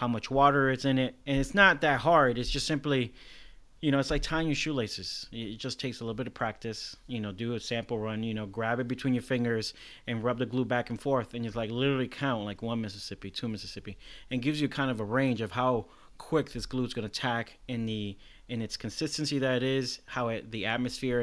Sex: male